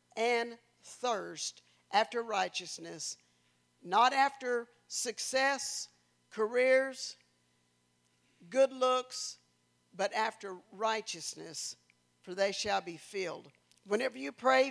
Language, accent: English, American